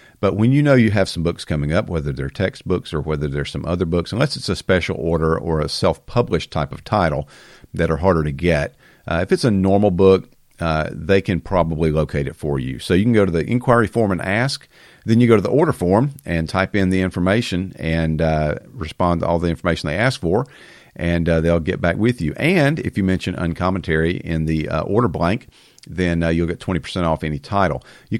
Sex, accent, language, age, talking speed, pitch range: male, American, English, 50-69, 230 wpm, 80-100 Hz